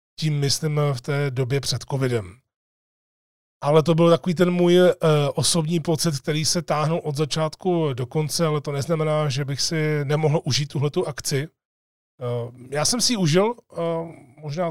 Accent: native